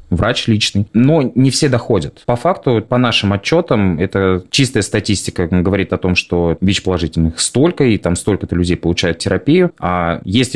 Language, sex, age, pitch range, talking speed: Russian, male, 20-39, 85-105 Hz, 160 wpm